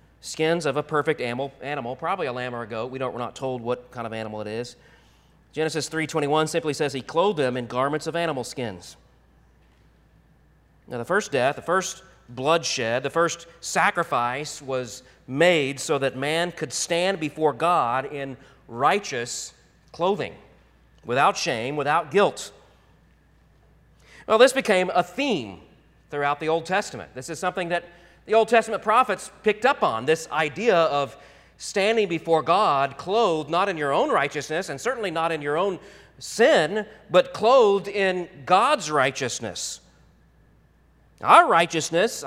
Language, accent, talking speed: English, American, 150 wpm